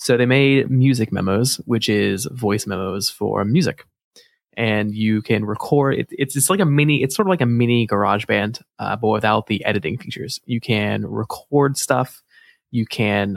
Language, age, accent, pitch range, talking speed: English, 20-39, American, 105-130 Hz, 180 wpm